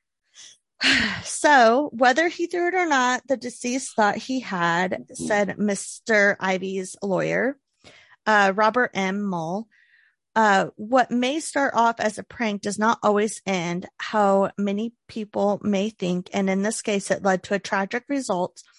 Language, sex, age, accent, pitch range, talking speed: English, female, 30-49, American, 195-240 Hz, 150 wpm